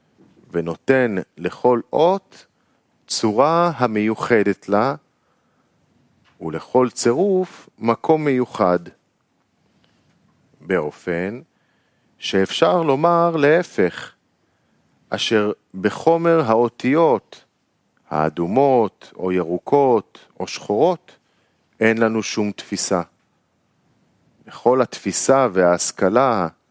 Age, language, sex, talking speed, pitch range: 50-69, Hebrew, male, 65 wpm, 105-145 Hz